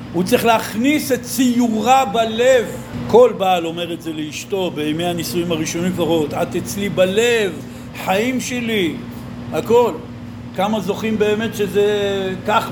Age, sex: 60-79, male